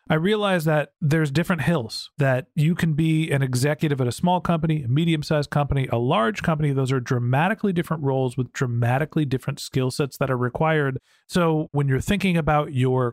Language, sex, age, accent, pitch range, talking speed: English, male, 40-59, American, 135-170 Hz, 185 wpm